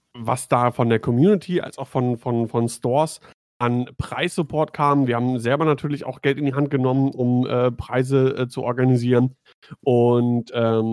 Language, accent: German, German